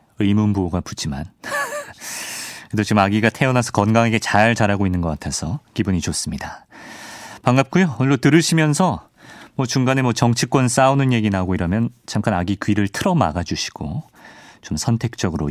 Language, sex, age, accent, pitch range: Korean, male, 30-49, native, 95-130 Hz